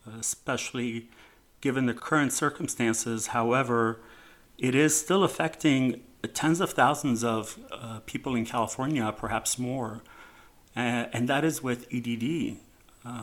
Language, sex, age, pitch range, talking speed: English, male, 40-59, 115-135 Hz, 125 wpm